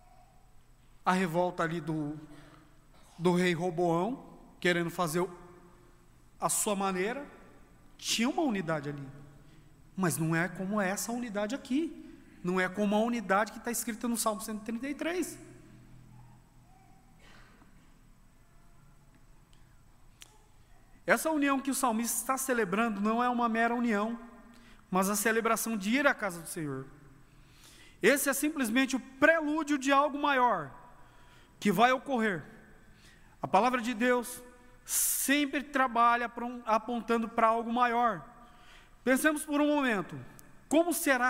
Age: 40-59